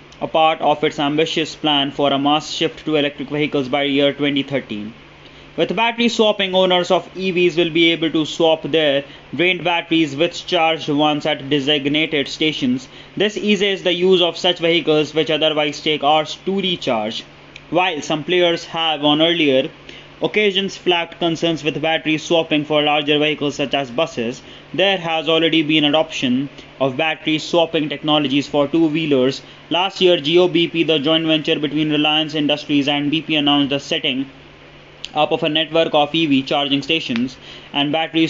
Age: 20-39